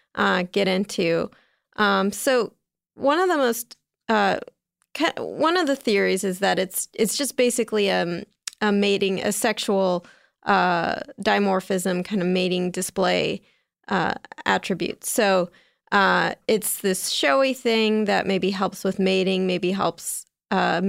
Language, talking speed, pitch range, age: English, 135 wpm, 195-235 Hz, 30-49